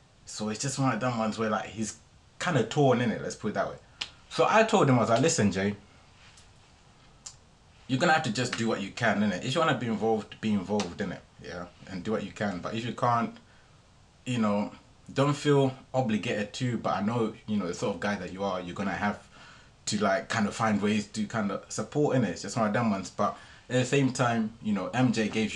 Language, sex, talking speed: English, male, 240 wpm